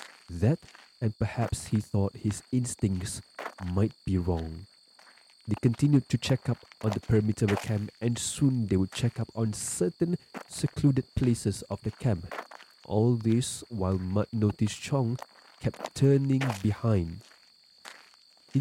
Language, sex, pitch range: English, male, 100-125 Hz